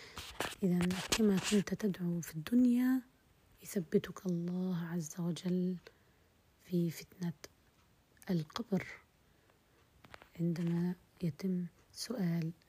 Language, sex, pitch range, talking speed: Arabic, female, 170-195 Hz, 75 wpm